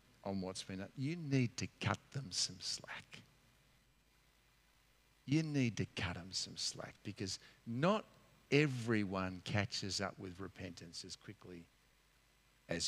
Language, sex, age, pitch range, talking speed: English, male, 50-69, 110-155 Hz, 130 wpm